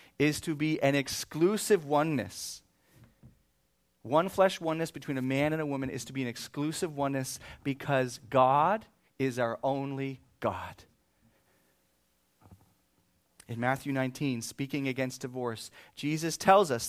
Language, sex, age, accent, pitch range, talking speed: English, male, 40-59, American, 115-160 Hz, 130 wpm